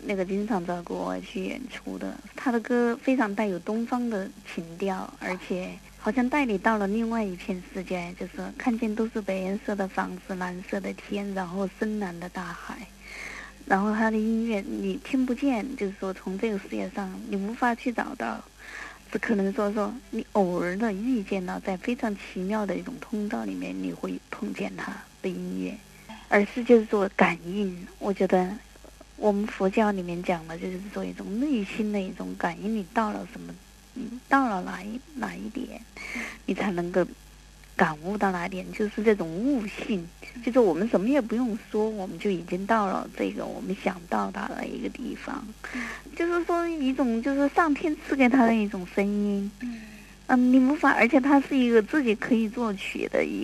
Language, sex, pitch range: Chinese, female, 190-245 Hz